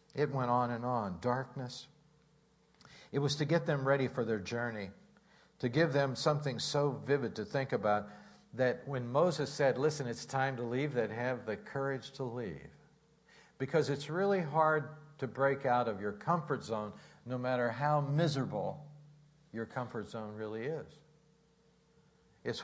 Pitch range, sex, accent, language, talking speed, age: 125-160 Hz, male, American, English, 160 wpm, 60-79